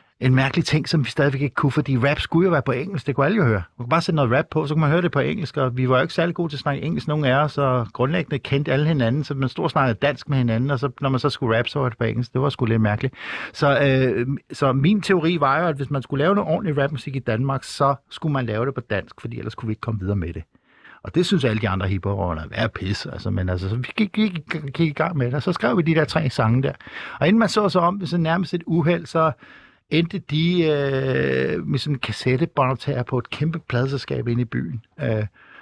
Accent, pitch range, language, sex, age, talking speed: native, 120-155 Hz, Danish, male, 60-79, 275 wpm